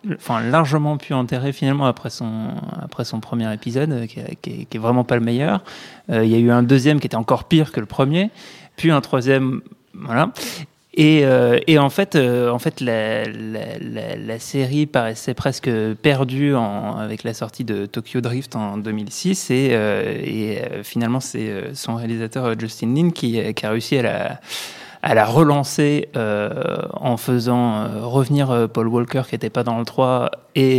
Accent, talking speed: French, 190 wpm